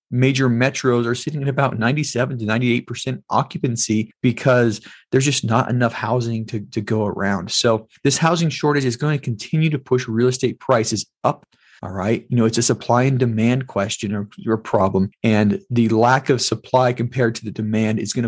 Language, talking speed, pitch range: English, 195 wpm, 115-135 Hz